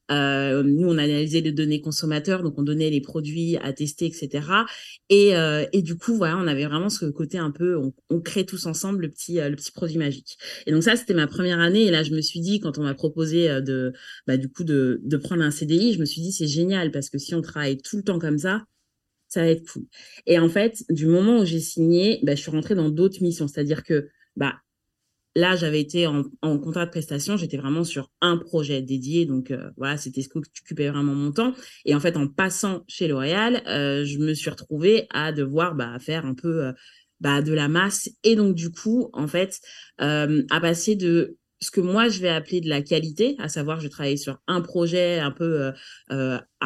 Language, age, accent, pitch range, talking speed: French, 30-49, French, 145-180 Hz, 235 wpm